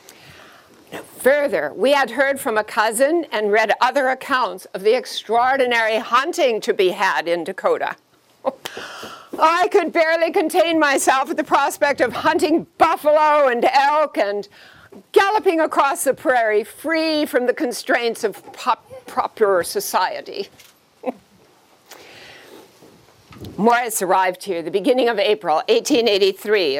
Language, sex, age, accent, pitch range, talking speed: English, female, 60-79, American, 210-320 Hz, 120 wpm